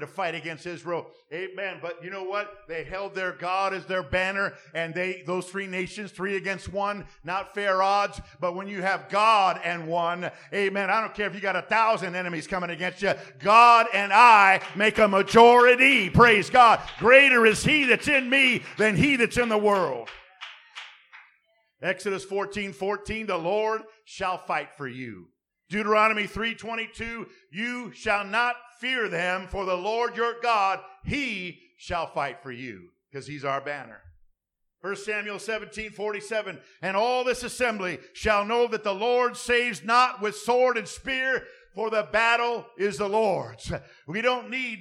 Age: 50-69